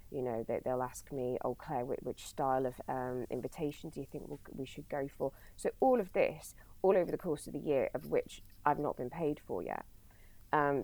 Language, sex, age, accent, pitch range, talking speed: English, female, 20-39, British, 125-145 Hz, 215 wpm